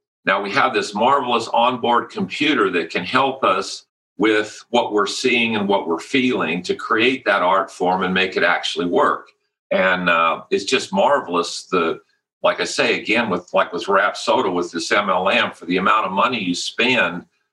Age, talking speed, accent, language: 50-69, 185 wpm, American, English